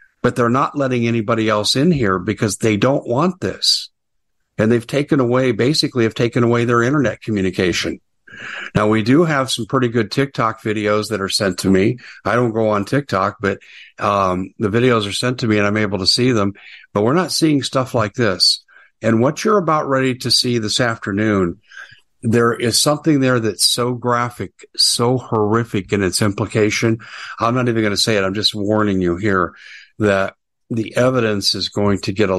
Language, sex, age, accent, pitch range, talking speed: English, male, 50-69, American, 100-125 Hz, 195 wpm